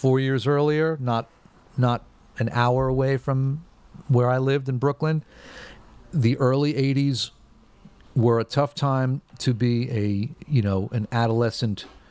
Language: English